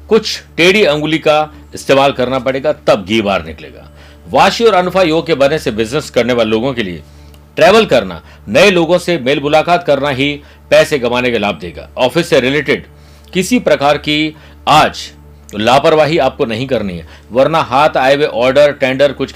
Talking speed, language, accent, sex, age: 180 wpm, Hindi, native, male, 50-69